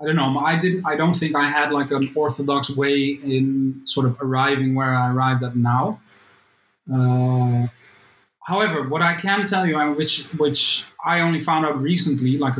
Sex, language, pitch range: male, English, 130-170 Hz